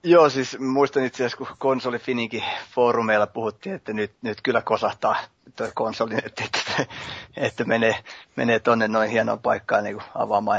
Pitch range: 110-130 Hz